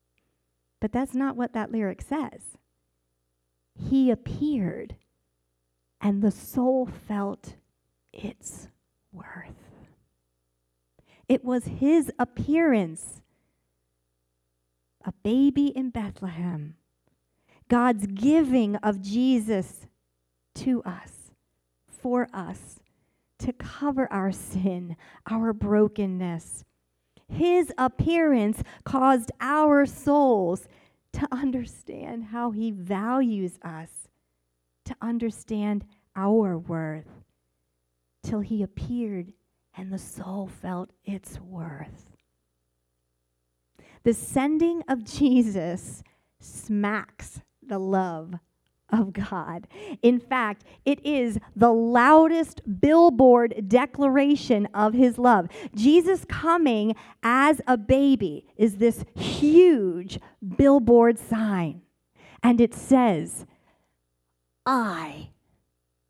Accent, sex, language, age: American, female, English, 40-59